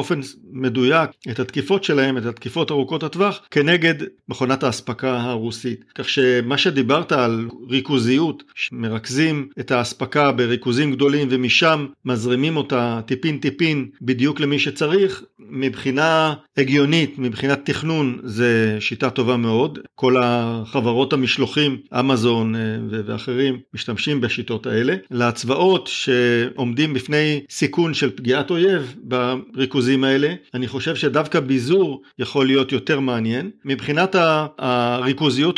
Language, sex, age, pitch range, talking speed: Hebrew, male, 50-69, 125-150 Hz, 110 wpm